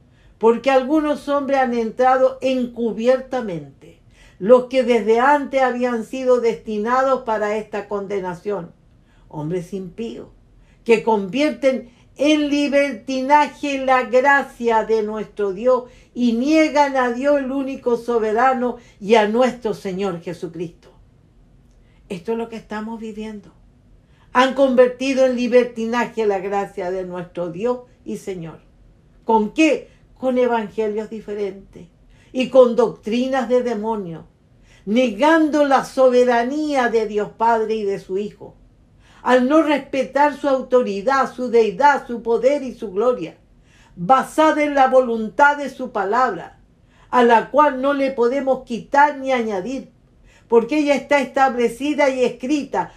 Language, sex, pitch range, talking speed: English, female, 215-265 Hz, 125 wpm